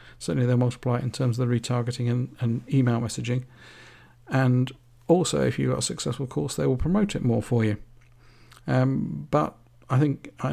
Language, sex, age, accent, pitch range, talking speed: English, male, 50-69, British, 120-130 Hz, 190 wpm